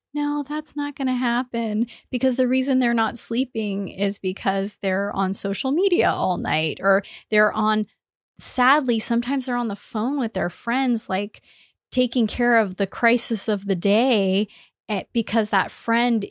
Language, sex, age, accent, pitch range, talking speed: English, female, 20-39, American, 195-235 Hz, 165 wpm